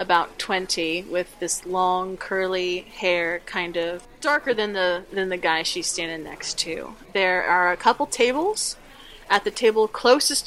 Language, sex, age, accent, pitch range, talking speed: English, female, 20-39, American, 180-235 Hz, 160 wpm